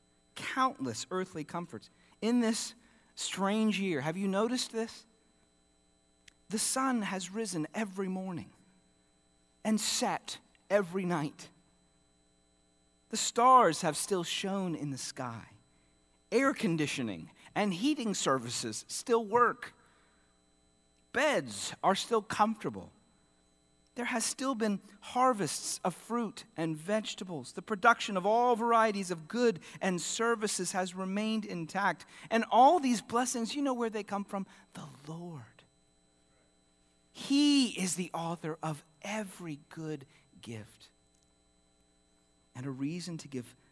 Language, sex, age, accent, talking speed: English, male, 40-59, American, 120 wpm